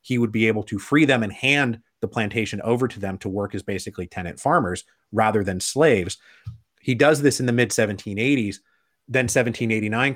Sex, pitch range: male, 105-125 Hz